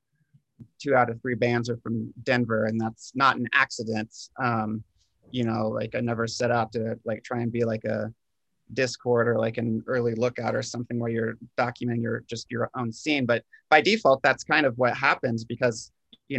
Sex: male